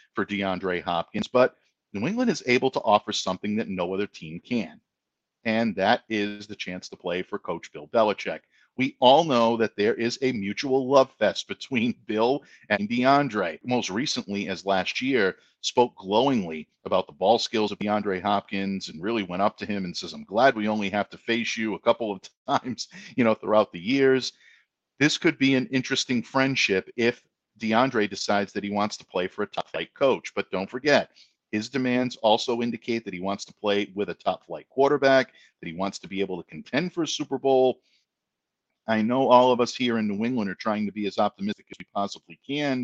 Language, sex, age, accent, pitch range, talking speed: English, male, 50-69, American, 100-130 Hz, 205 wpm